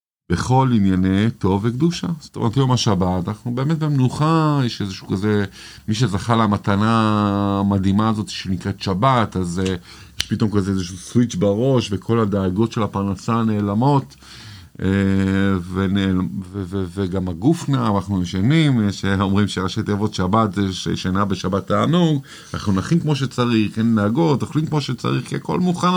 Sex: male